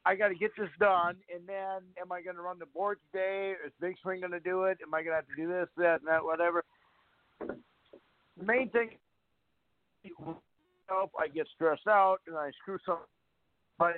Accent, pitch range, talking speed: American, 160-200 Hz, 220 wpm